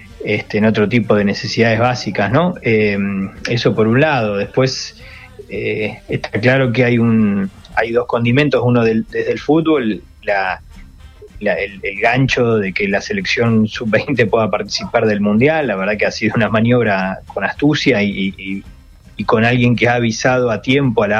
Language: Spanish